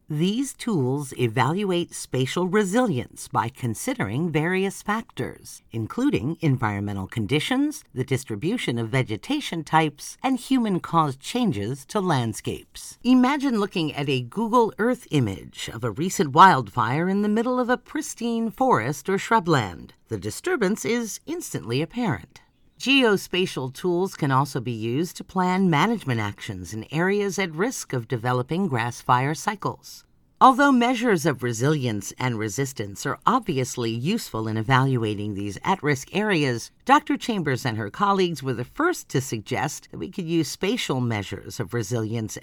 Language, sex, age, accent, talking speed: English, female, 50-69, American, 135 wpm